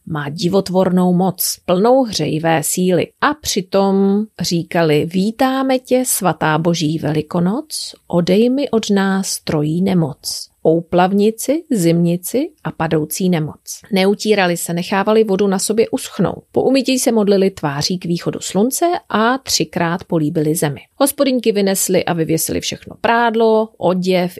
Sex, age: female, 40-59